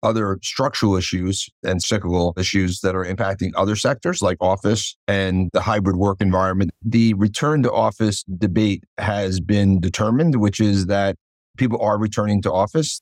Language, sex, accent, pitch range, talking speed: English, male, American, 95-105 Hz, 155 wpm